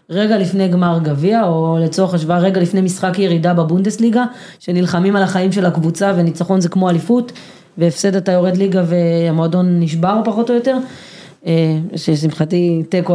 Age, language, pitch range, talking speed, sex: 20-39, Hebrew, 175-215 Hz, 150 wpm, female